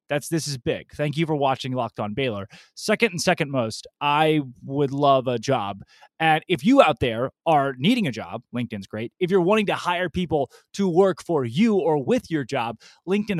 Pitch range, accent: 135-180 Hz, American